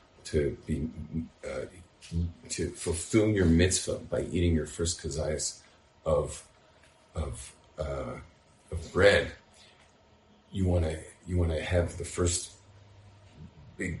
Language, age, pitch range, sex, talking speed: English, 50-69, 80-95 Hz, male, 115 wpm